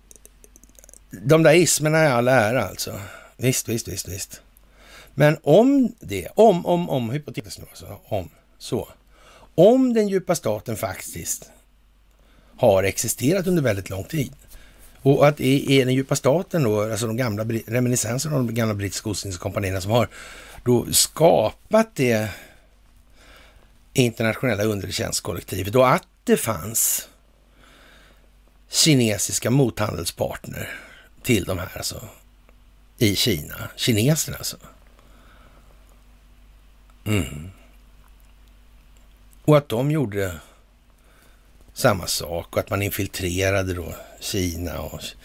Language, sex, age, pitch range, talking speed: Swedish, male, 60-79, 85-135 Hz, 110 wpm